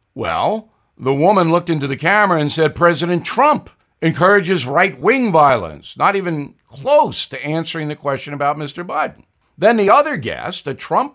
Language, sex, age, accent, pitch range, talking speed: English, male, 60-79, American, 115-175 Hz, 160 wpm